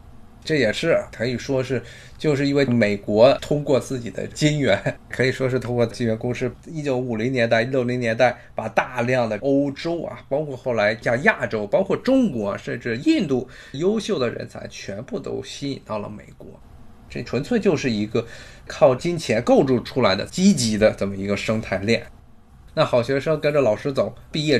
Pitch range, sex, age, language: 110-145 Hz, male, 20-39, Chinese